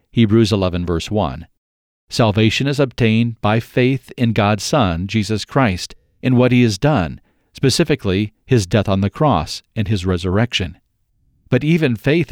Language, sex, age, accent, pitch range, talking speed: English, male, 50-69, American, 100-130 Hz, 150 wpm